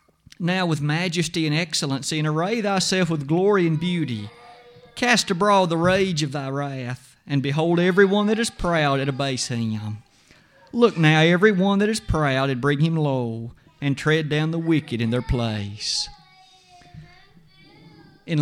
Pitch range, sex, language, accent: 145-185 Hz, male, English, American